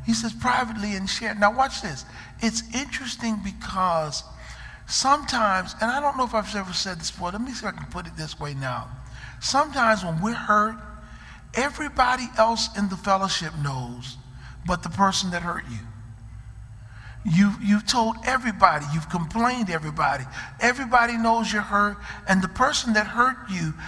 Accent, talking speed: American, 170 wpm